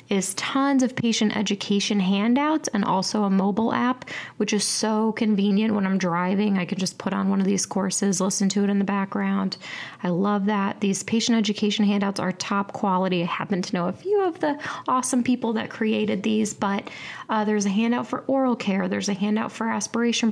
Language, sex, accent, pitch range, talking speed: English, female, American, 195-230 Hz, 205 wpm